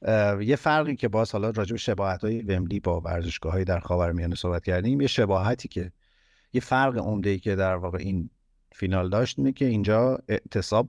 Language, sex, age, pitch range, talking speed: Persian, male, 50-69, 90-120 Hz, 180 wpm